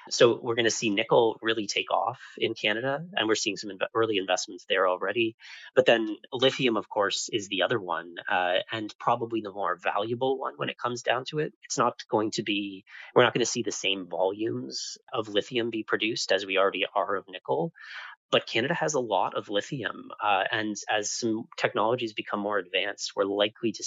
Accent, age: American, 30-49